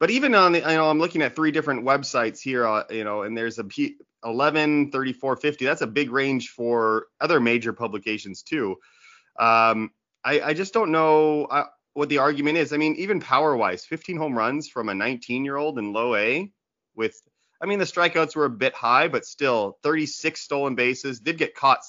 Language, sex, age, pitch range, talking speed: English, male, 30-49, 110-150 Hz, 200 wpm